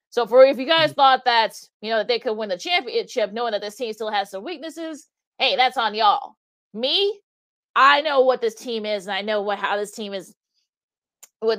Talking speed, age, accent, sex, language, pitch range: 225 wpm, 30-49, American, female, English, 205-250 Hz